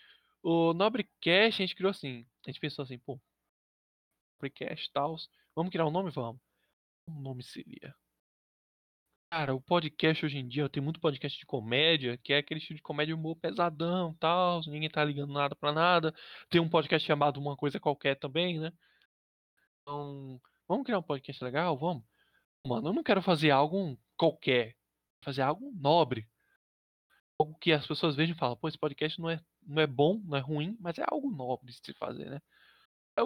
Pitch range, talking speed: 140-180 Hz, 185 wpm